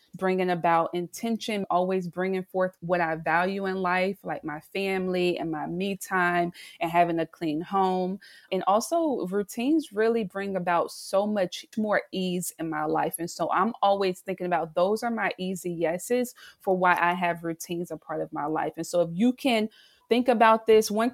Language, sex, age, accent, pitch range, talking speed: English, female, 30-49, American, 175-220 Hz, 185 wpm